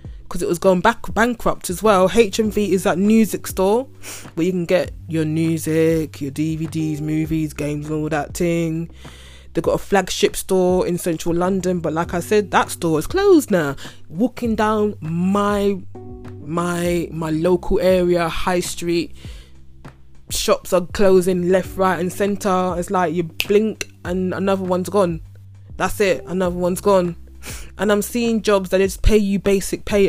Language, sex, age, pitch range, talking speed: English, female, 20-39, 160-200 Hz, 165 wpm